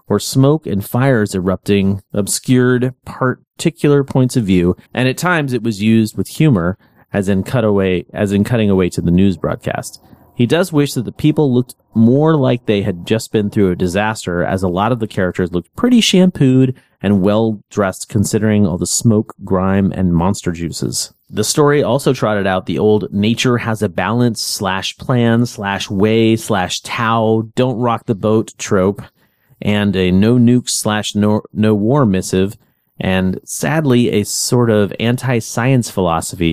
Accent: American